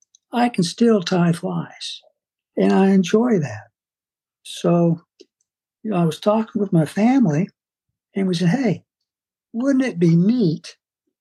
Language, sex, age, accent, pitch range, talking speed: English, male, 60-79, American, 170-220 Hz, 130 wpm